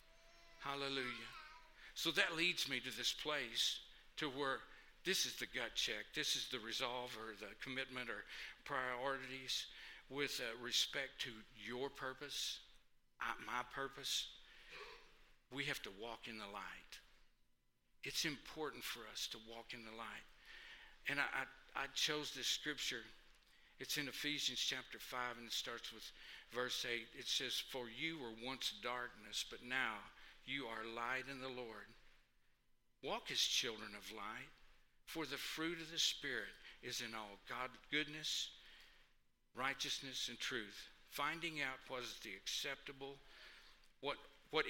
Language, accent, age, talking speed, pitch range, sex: English, American, 60-79, 145 wpm, 115-150 Hz, male